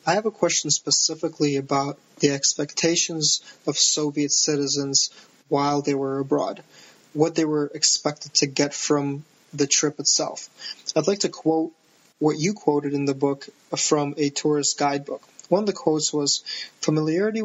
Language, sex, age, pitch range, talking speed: English, male, 20-39, 145-160 Hz, 155 wpm